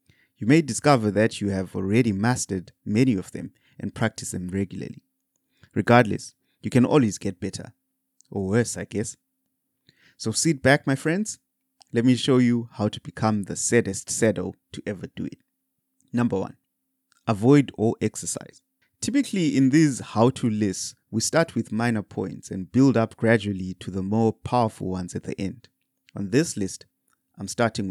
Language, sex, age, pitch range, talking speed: English, male, 30-49, 100-130 Hz, 165 wpm